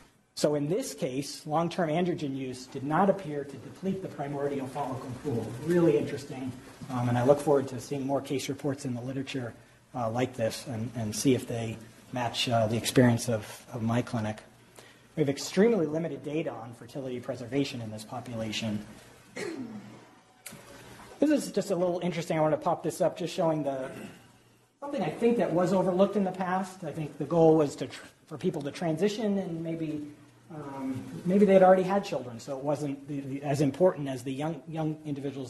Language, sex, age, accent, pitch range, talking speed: English, male, 40-59, American, 125-160 Hz, 195 wpm